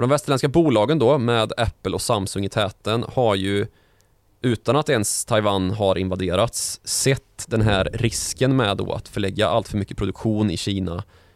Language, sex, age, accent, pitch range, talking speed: Swedish, male, 20-39, native, 100-115 Hz, 170 wpm